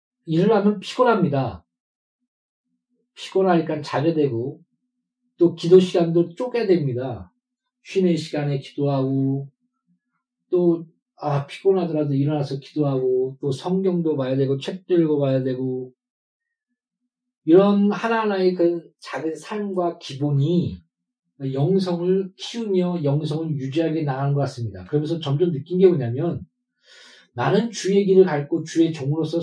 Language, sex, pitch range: Korean, male, 140-190 Hz